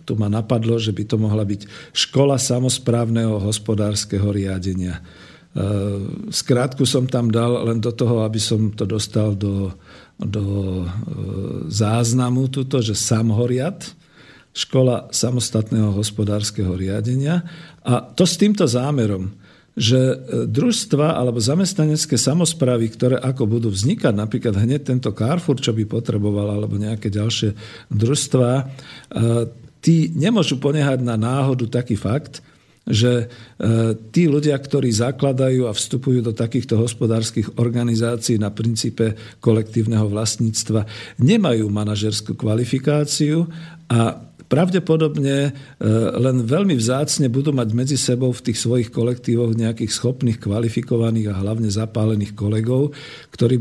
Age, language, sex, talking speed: 50-69, Slovak, male, 120 wpm